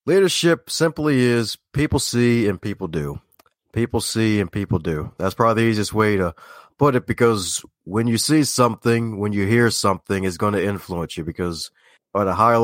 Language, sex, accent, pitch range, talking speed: English, male, American, 100-125 Hz, 185 wpm